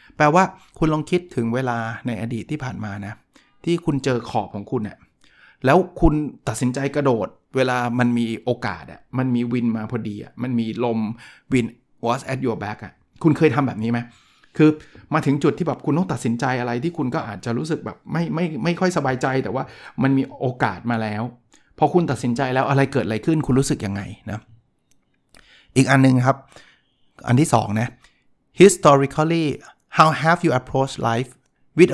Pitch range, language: 115-145 Hz, Thai